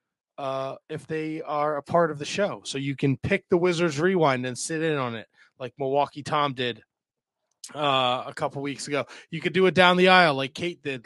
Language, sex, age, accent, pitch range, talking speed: English, male, 20-39, American, 135-170 Hz, 215 wpm